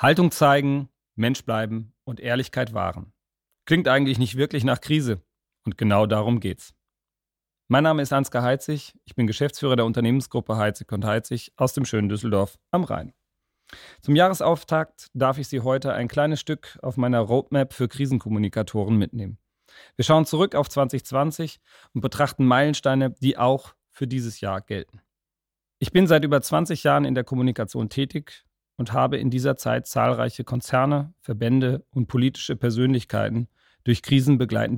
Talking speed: 150 wpm